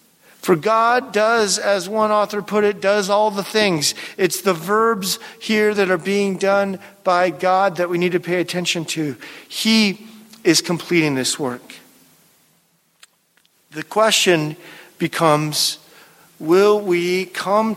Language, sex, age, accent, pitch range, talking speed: English, male, 50-69, American, 175-210 Hz, 135 wpm